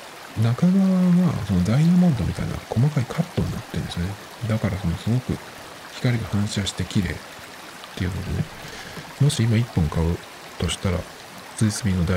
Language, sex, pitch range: Japanese, male, 90-125 Hz